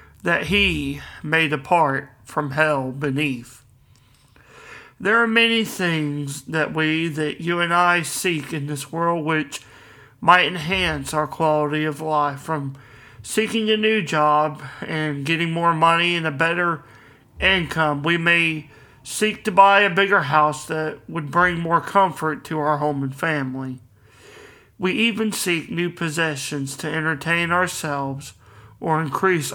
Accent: American